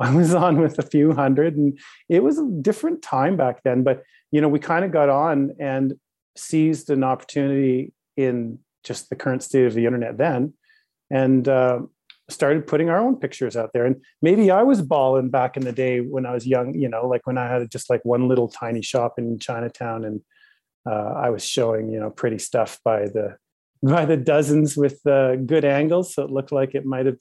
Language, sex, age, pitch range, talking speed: English, male, 40-59, 125-155 Hz, 215 wpm